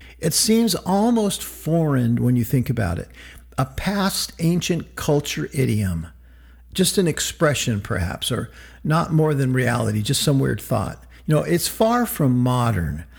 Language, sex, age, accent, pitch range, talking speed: English, male, 50-69, American, 120-160 Hz, 150 wpm